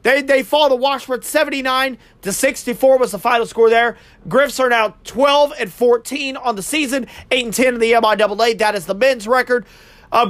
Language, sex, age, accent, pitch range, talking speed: English, male, 30-49, American, 225-270 Hz, 200 wpm